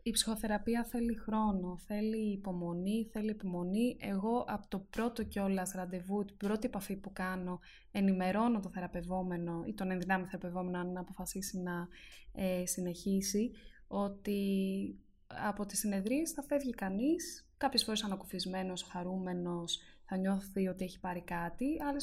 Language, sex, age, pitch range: Greek, female, 20-39, 190-235 Hz